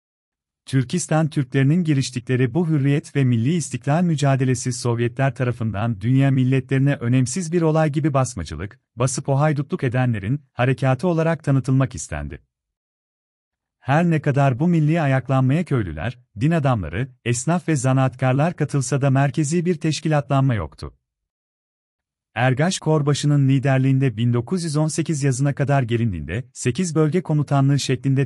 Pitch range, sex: 120-150 Hz, male